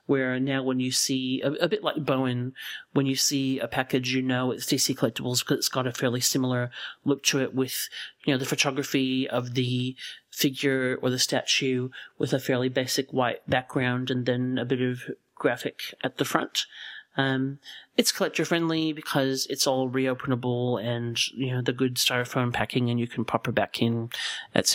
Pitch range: 125-140 Hz